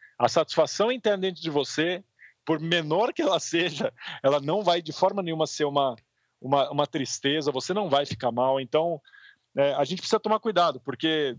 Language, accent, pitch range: Portuguese, Brazilian, 140-190 Hz